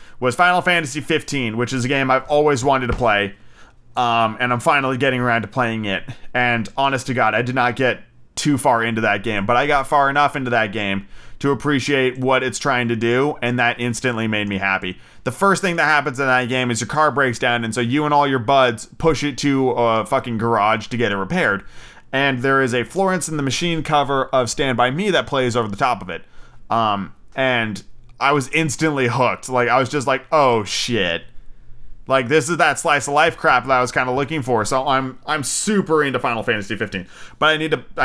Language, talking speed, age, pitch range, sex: English, 230 wpm, 30-49, 110-135 Hz, male